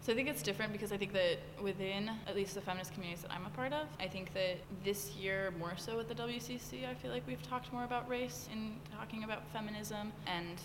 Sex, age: female, 20-39